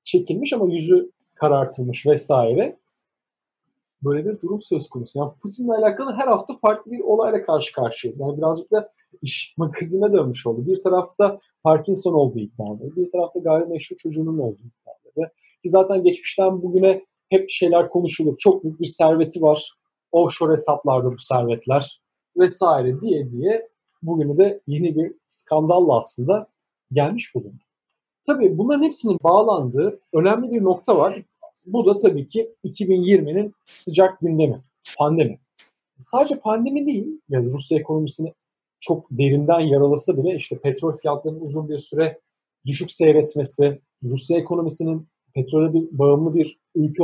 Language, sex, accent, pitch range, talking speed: Turkish, male, native, 145-195 Hz, 135 wpm